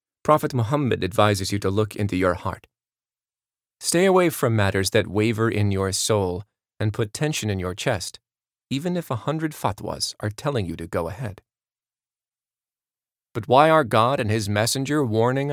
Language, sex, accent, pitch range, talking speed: English, male, American, 105-125 Hz, 165 wpm